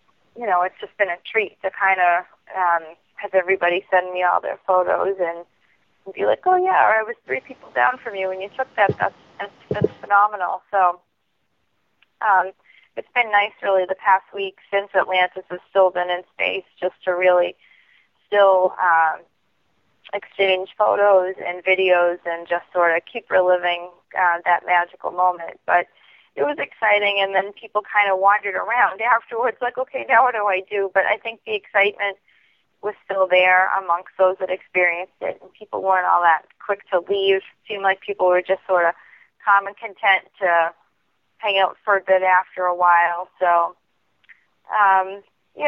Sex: female